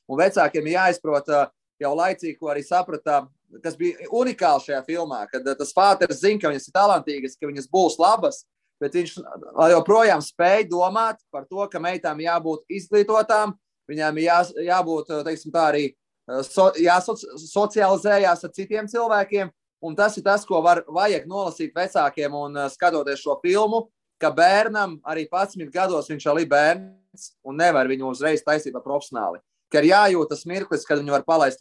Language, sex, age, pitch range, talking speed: English, male, 20-39, 145-185 Hz, 150 wpm